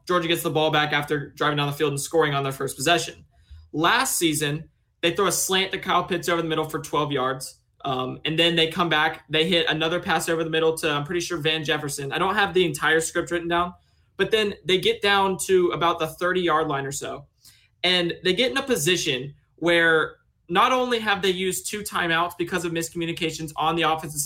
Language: English